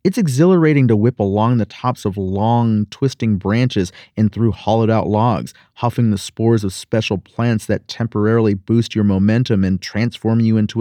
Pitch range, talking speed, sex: 105-130 Hz, 165 wpm, male